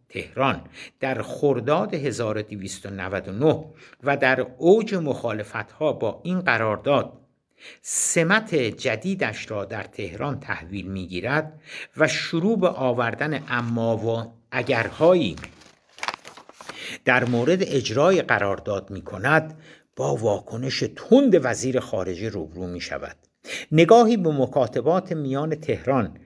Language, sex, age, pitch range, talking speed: Persian, male, 60-79, 115-155 Hz, 105 wpm